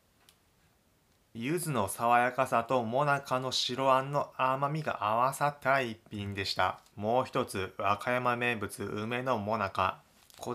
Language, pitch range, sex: Japanese, 110-130 Hz, male